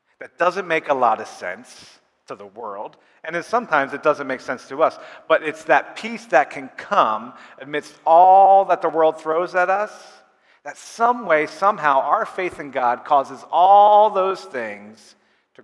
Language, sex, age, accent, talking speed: English, male, 40-59, American, 175 wpm